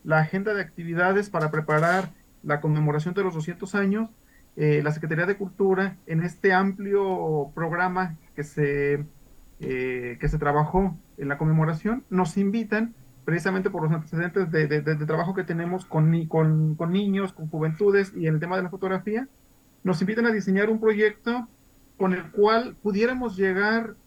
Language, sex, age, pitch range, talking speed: Spanish, male, 40-59, 160-205 Hz, 165 wpm